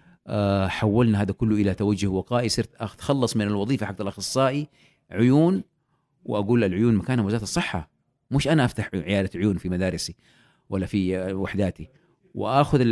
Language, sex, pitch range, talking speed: Arabic, male, 95-120 Hz, 135 wpm